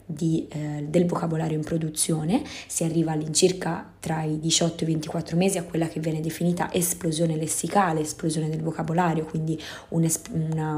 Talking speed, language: 165 wpm, Italian